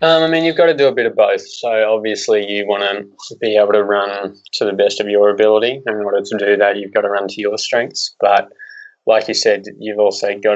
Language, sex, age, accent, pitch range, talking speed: English, male, 20-39, Australian, 100-110 Hz, 255 wpm